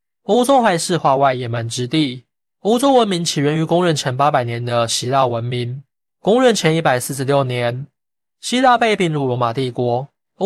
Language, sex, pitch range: Chinese, male, 125-165 Hz